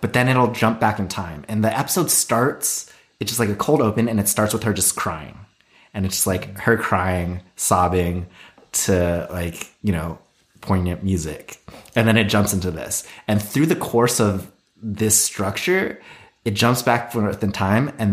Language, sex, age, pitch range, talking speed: English, male, 30-49, 90-105 Hz, 190 wpm